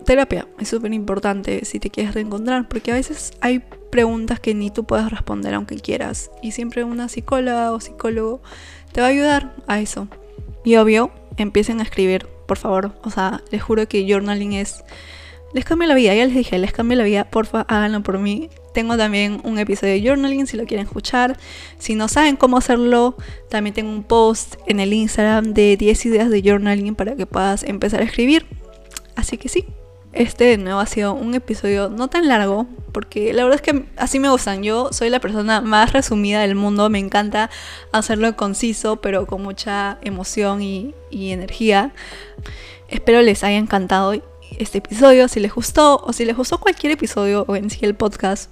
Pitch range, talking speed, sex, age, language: 200-240 Hz, 190 wpm, female, 10-29, Spanish